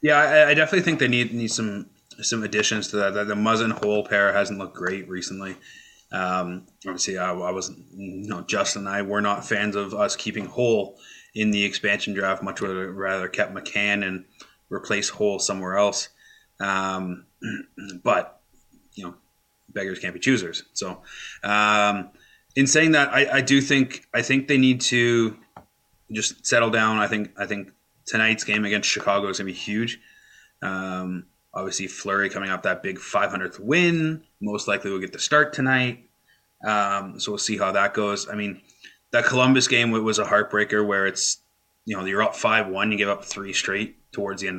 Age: 20-39